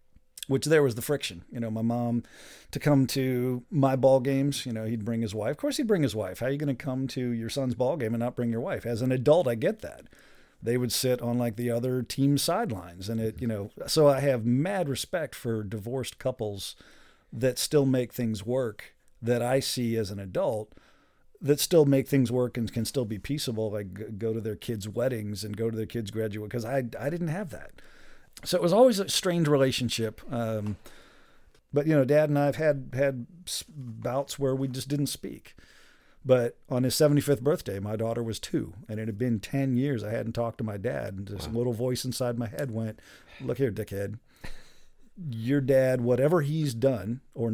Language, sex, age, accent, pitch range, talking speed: English, male, 40-59, American, 115-140 Hz, 215 wpm